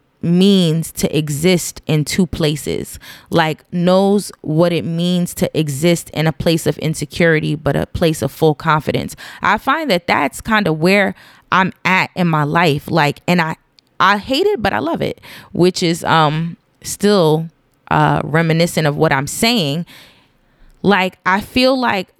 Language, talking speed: English, 160 wpm